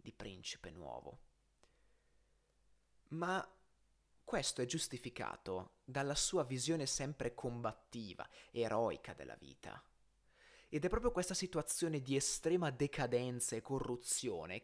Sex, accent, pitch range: male, native, 125-165 Hz